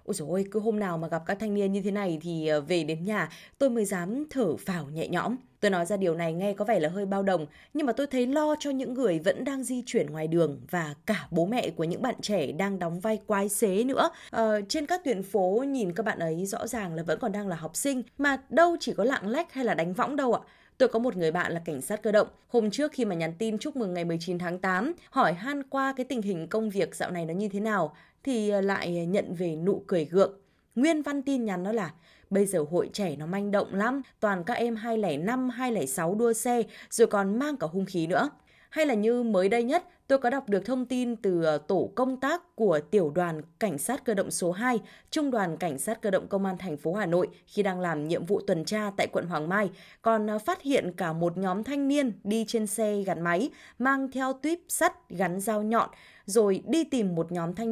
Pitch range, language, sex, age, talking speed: 180-245 Hz, Vietnamese, female, 20-39, 250 wpm